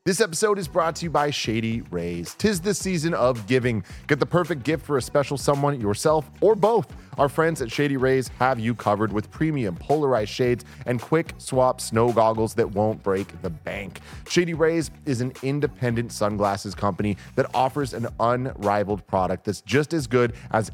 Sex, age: male, 30-49